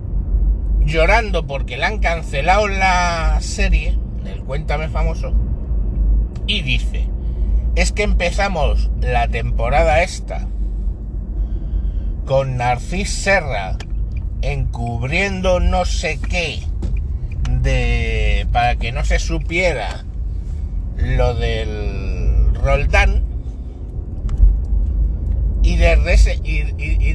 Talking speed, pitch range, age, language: 85 wpm, 65-85 Hz, 60-79, Spanish